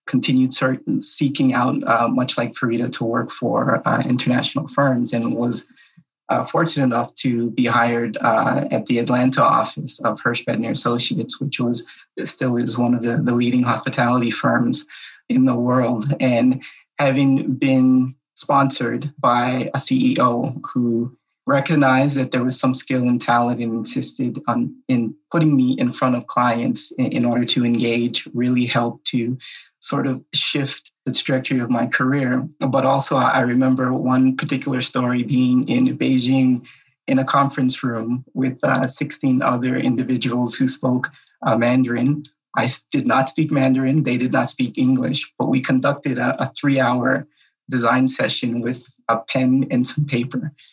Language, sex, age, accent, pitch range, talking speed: English, male, 20-39, American, 120-135 Hz, 160 wpm